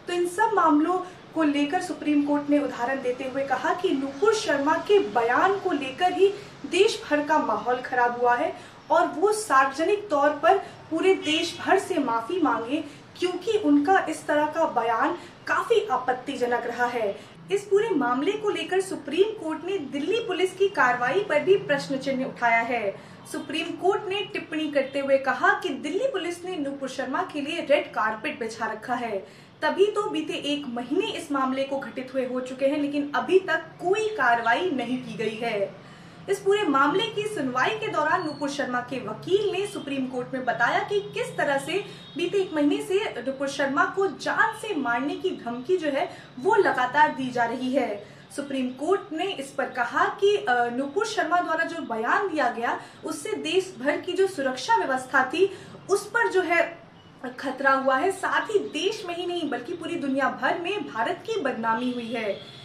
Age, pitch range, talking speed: 30-49, 260-370 Hz, 185 wpm